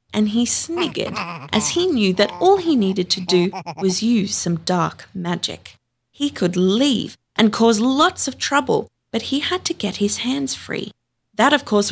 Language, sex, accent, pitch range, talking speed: English, female, Australian, 175-245 Hz, 180 wpm